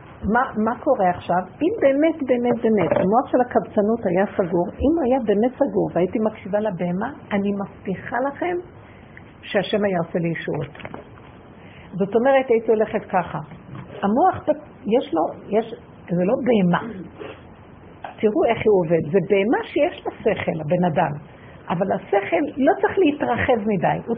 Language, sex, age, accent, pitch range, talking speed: Hebrew, female, 50-69, native, 185-250 Hz, 145 wpm